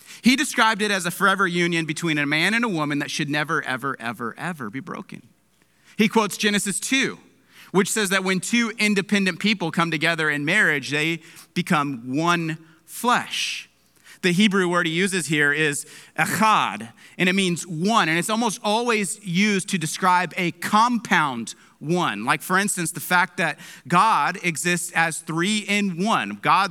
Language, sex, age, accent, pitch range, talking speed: English, male, 30-49, American, 160-210 Hz, 170 wpm